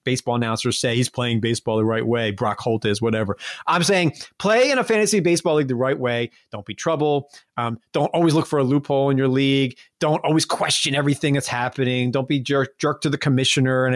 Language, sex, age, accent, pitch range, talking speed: English, male, 30-49, American, 130-175 Hz, 220 wpm